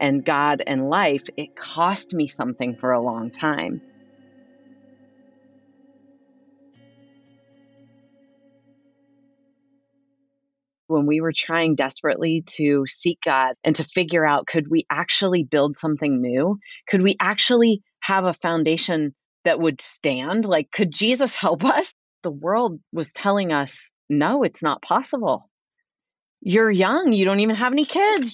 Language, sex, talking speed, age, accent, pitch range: English, female, 130 wpm, 30-49, American, 160-260 Hz